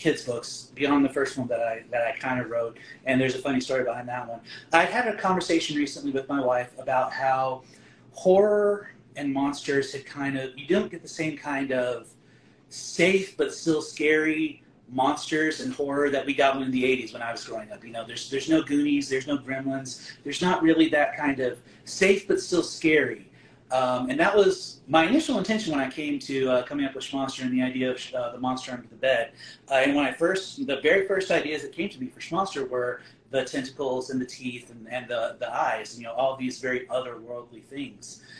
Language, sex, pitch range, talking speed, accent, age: English, male, 130-150 Hz, 220 wpm, American, 30-49